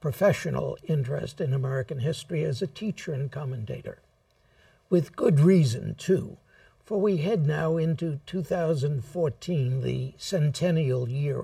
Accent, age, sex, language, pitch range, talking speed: American, 60-79, male, English, 140-175 Hz, 120 wpm